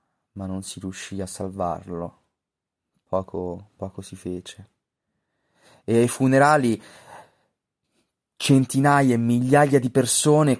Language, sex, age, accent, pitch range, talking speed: Italian, male, 30-49, native, 95-120 Hz, 100 wpm